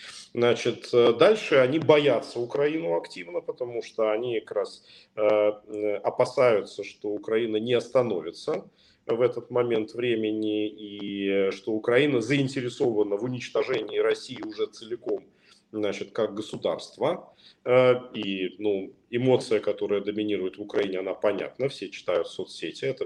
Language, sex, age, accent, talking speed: Ukrainian, male, 40-59, native, 120 wpm